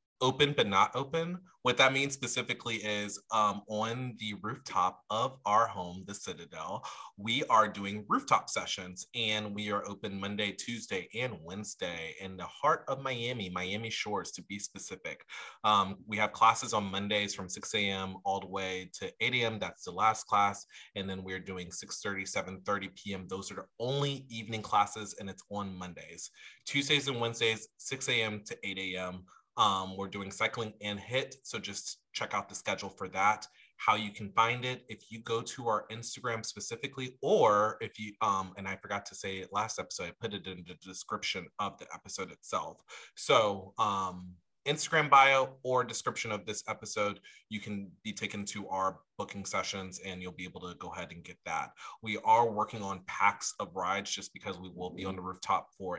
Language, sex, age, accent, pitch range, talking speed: English, male, 30-49, American, 95-115 Hz, 190 wpm